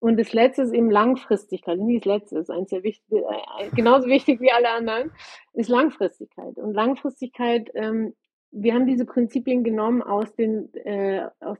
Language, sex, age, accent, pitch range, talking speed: German, female, 30-49, German, 210-260 Hz, 150 wpm